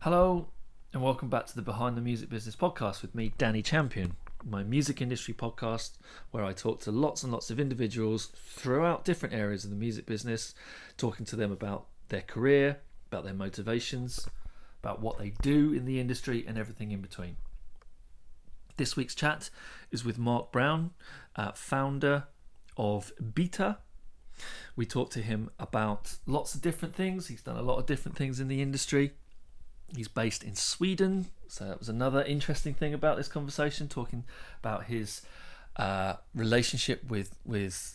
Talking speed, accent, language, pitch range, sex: 165 wpm, British, English, 105-140 Hz, male